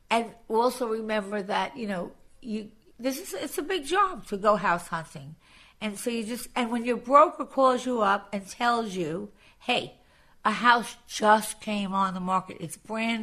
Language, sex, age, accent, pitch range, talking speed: English, female, 50-69, American, 200-260 Hz, 185 wpm